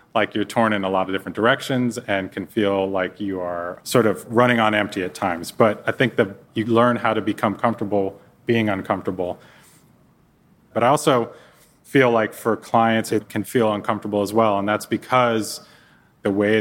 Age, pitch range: 30-49, 100-110 Hz